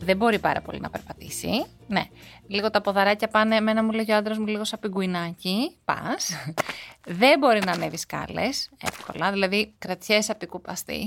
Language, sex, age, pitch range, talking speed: Greek, female, 30-49, 190-230 Hz, 165 wpm